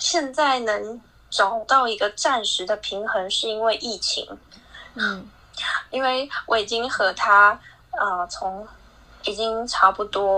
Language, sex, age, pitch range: Chinese, female, 20-39, 200-245 Hz